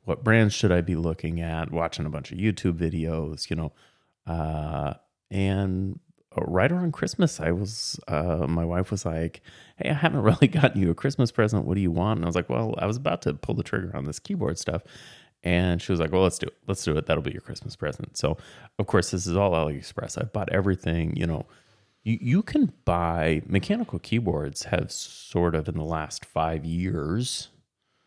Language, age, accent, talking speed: English, 30-49, American, 210 wpm